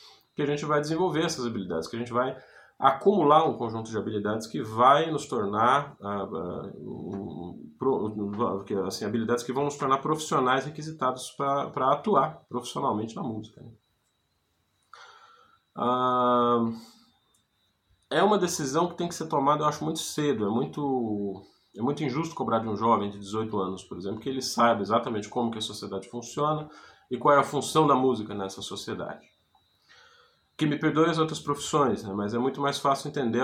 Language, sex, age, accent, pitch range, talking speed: Portuguese, male, 20-39, Brazilian, 105-145 Hz, 155 wpm